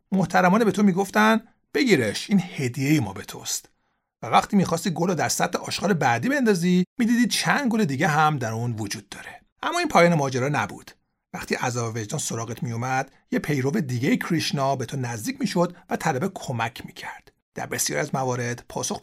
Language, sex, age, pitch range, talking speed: Persian, male, 50-69, 130-195 Hz, 195 wpm